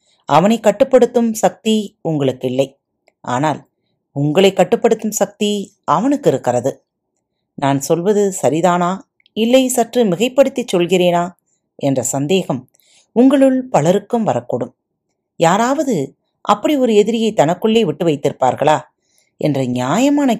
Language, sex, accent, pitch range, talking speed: Tamil, female, native, 145-225 Hz, 90 wpm